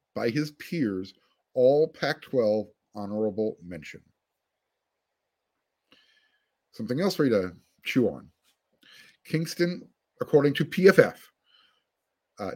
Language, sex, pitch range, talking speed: English, male, 110-160 Hz, 90 wpm